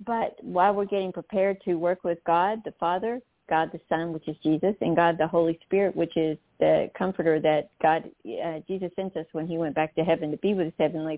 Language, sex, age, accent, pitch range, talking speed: English, female, 50-69, American, 155-175 Hz, 230 wpm